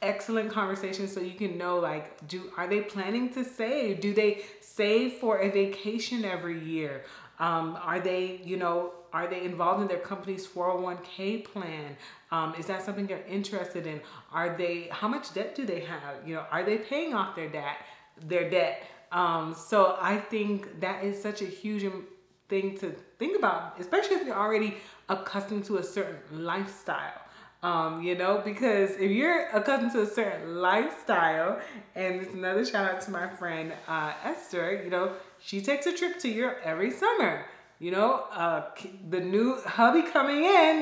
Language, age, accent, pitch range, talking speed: English, 30-49, American, 175-220 Hz, 180 wpm